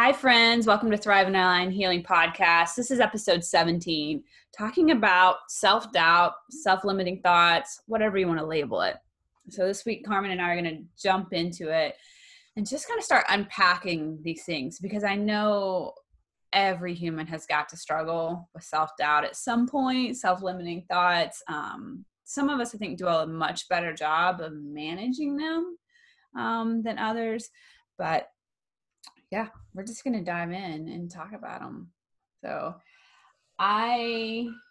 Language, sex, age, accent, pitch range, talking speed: English, female, 20-39, American, 170-230 Hz, 155 wpm